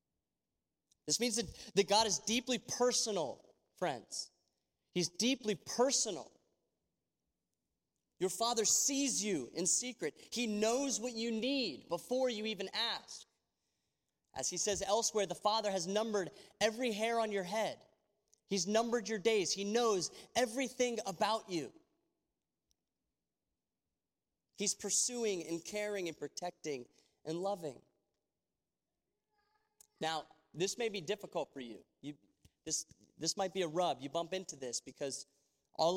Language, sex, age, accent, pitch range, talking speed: English, male, 30-49, American, 145-215 Hz, 125 wpm